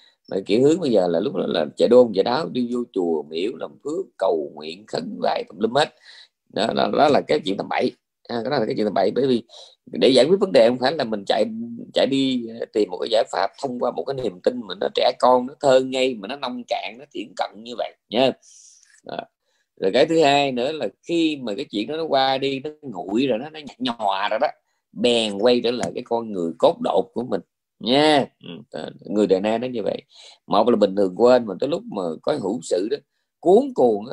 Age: 20-39